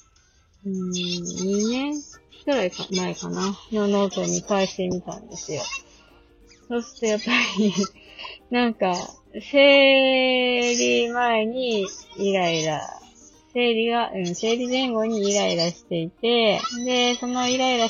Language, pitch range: Japanese, 160-210 Hz